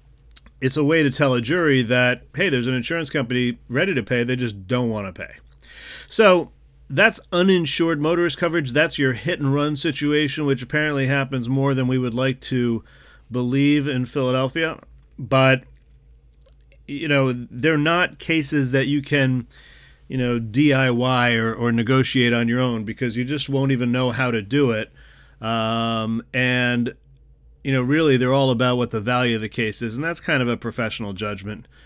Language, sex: English, male